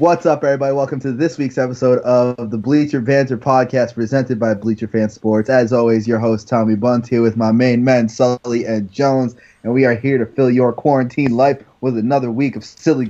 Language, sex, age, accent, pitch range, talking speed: English, male, 20-39, American, 115-140 Hz, 210 wpm